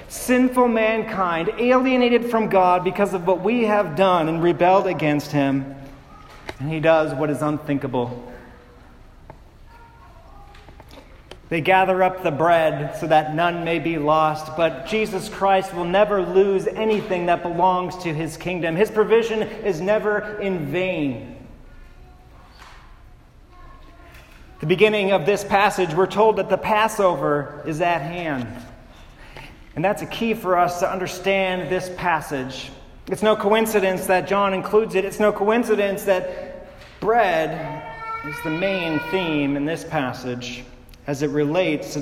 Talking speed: 135 wpm